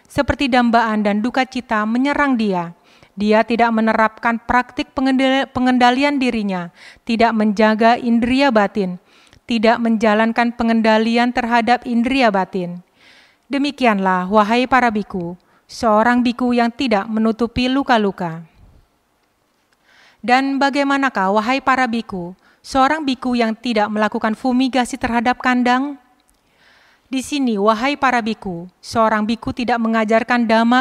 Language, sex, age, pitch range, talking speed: Indonesian, female, 30-49, 215-255 Hz, 110 wpm